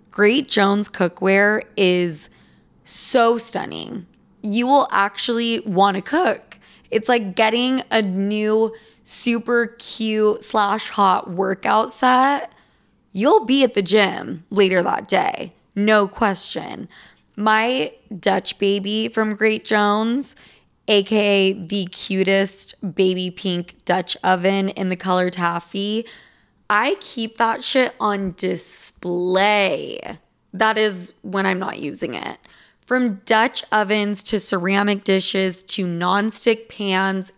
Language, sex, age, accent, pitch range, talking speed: English, female, 20-39, American, 190-225 Hz, 115 wpm